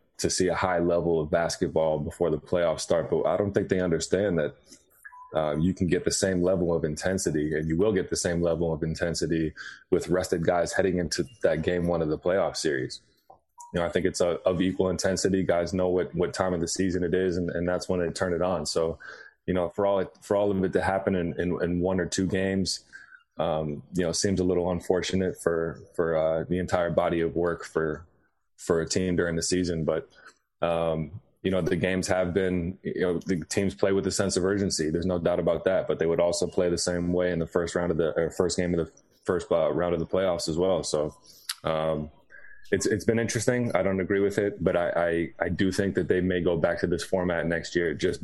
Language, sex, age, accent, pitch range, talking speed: English, male, 20-39, American, 80-95 Hz, 240 wpm